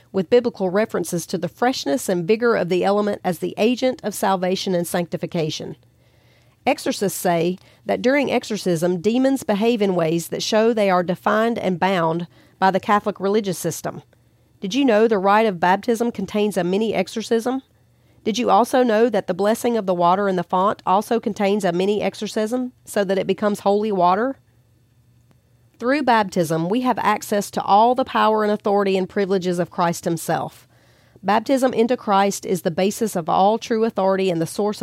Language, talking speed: English, 175 wpm